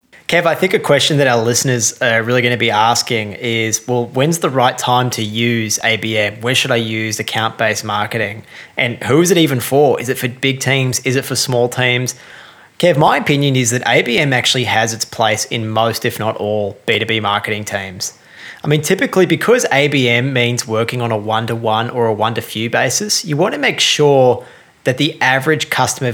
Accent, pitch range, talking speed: Australian, 110-135 Hz, 210 wpm